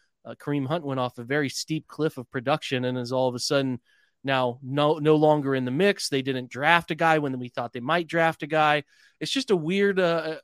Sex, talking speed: male, 240 wpm